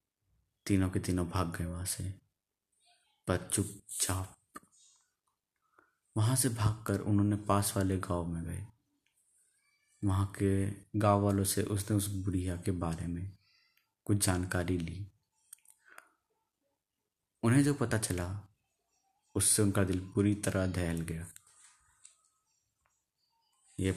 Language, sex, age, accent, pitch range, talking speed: Hindi, male, 30-49, native, 90-105 Hz, 110 wpm